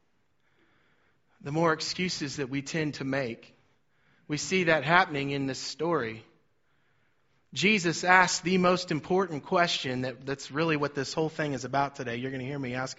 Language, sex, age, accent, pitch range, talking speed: English, male, 30-49, American, 145-190 Hz, 165 wpm